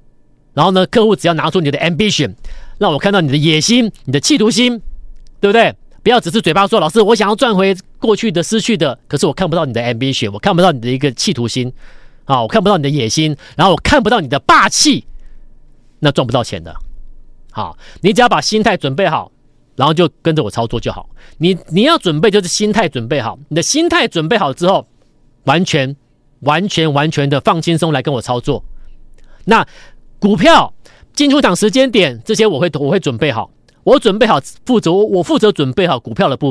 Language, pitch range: Chinese, 140-200 Hz